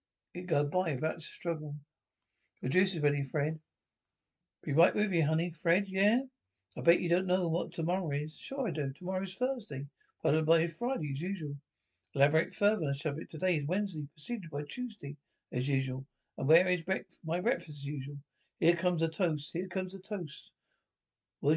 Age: 60-79